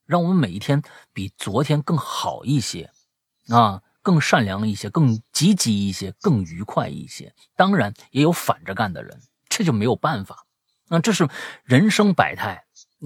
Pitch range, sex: 105-160 Hz, male